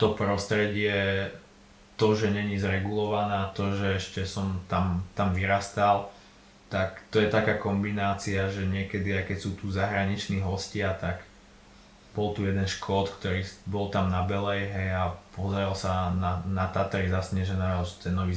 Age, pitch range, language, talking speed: 20-39, 95-105 Hz, Slovak, 150 wpm